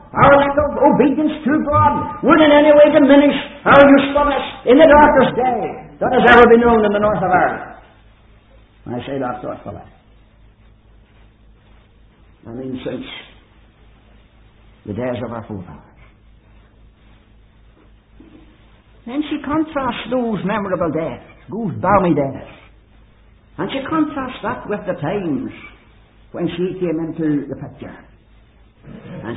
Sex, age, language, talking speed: male, 50-69, English, 130 wpm